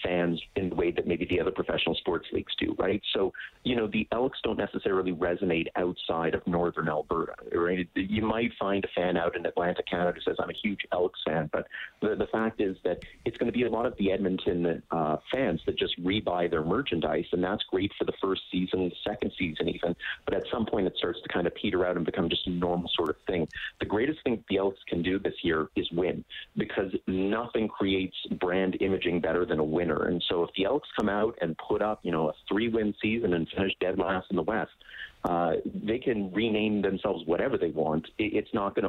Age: 30-49